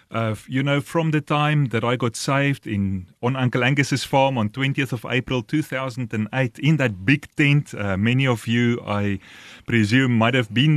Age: 30-49